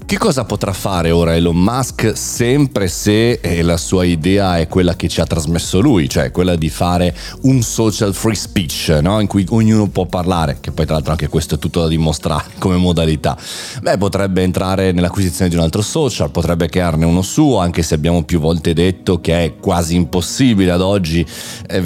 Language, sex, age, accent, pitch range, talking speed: Italian, male, 30-49, native, 85-110 Hz, 195 wpm